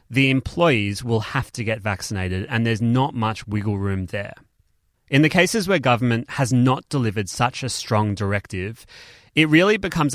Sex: male